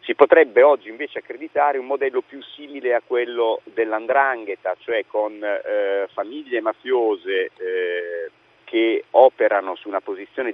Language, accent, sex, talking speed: Italian, native, male, 130 wpm